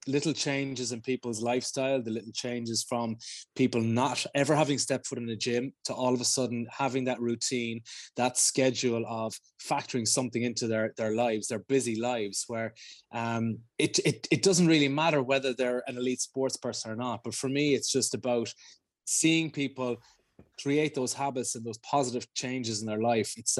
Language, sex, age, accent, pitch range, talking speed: English, male, 20-39, Irish, 115-140 Hz, 185 wpm